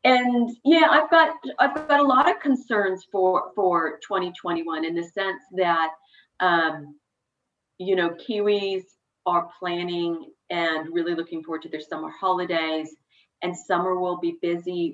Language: English